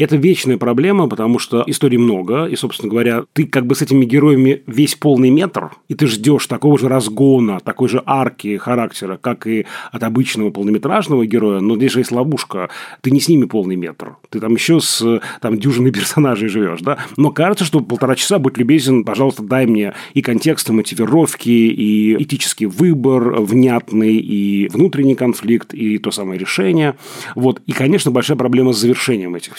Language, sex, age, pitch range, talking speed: Russian, male, 30-49, 110-140 Hz, 170 wpm